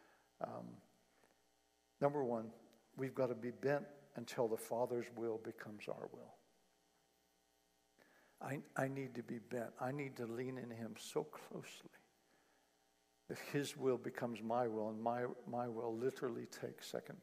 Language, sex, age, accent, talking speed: English, male, 60-79, American, 145 wpm